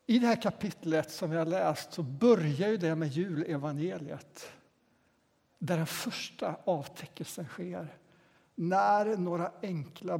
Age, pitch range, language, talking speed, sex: 60-79, 165-230 Hz, Swedish, 130 wpm, male